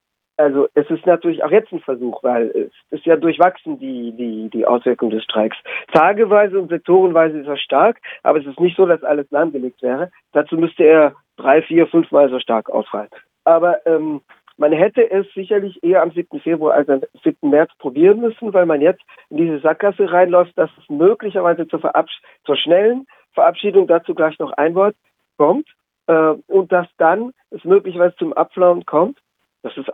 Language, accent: German, German